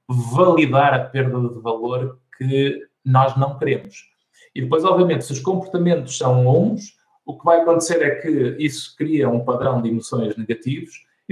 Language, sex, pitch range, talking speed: Portuguese, male, 125-160 Hz, 165 wpm